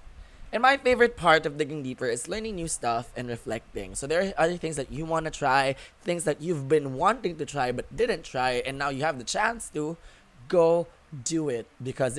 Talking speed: 215 wpm